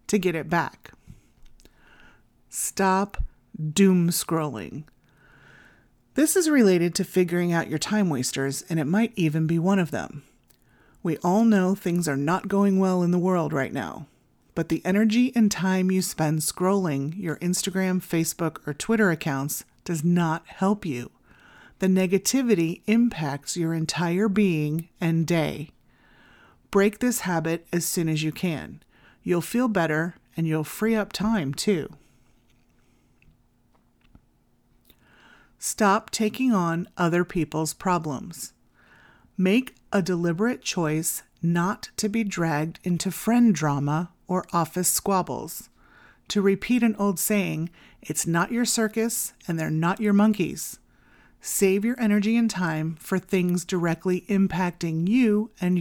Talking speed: 135 wpm